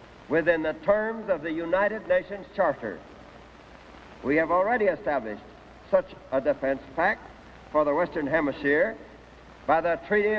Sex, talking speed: male, 135 wpm